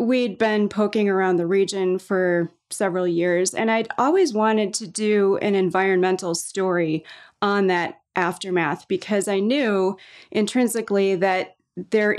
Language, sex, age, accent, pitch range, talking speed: English, female, 30-49, American, 185-225 Hz, 135 wpm